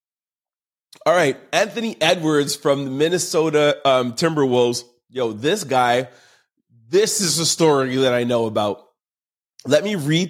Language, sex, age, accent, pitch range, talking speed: English, male, 30-49, American, 120-155 Hz, 135 wpm